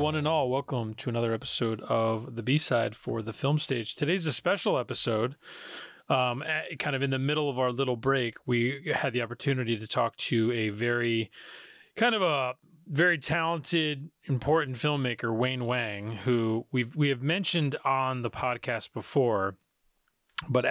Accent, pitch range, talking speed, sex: American, 110-130 Hz, 160 wpm, male